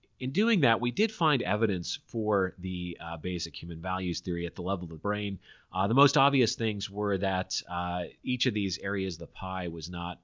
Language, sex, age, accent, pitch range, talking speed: English, male, 30-49, American, 85-105 Hz, 215 wpm